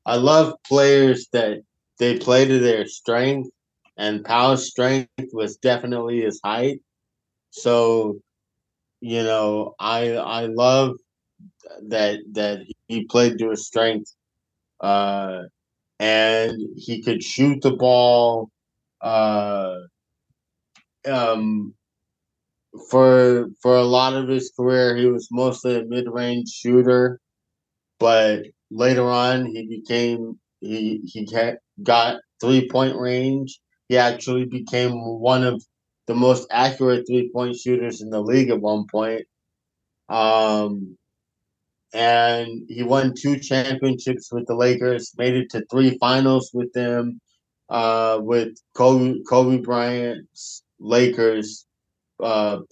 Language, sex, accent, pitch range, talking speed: English, male, American, 110-125 Hz, 115 wpm